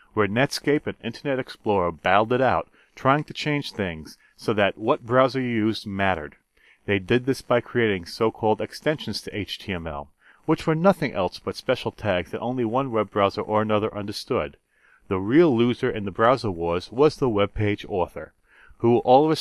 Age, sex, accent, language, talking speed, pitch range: 40-59, male, American, English, 180 wpm, 100-135 Hz